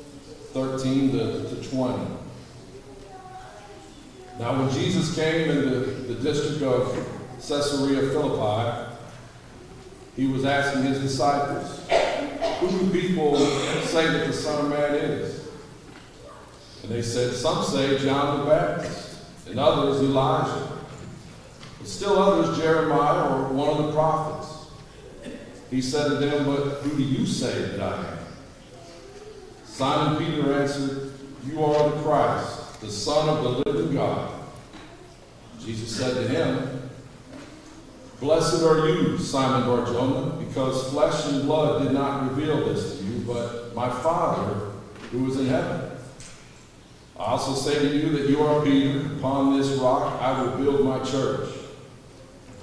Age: 50-69